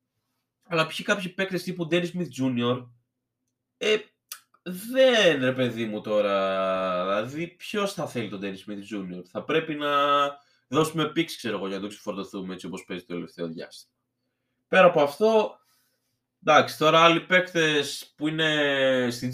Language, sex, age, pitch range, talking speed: Greek, male, 20-39, 115-170 Hz, 150 wpm